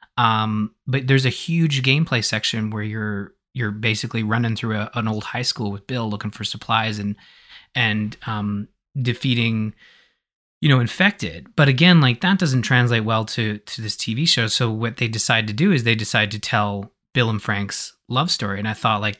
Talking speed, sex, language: 195 wpm, male, English